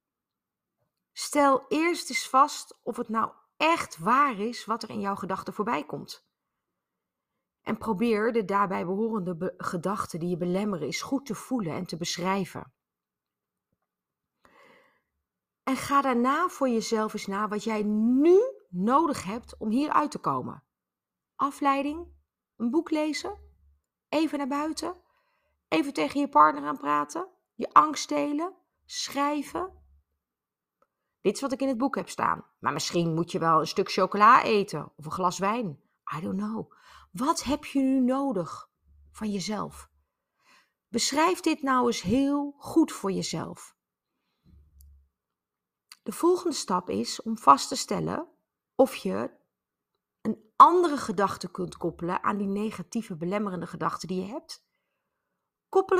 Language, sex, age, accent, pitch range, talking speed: Dutch, female, 30-49, Dutch, 185-290 Hz, 140 wpm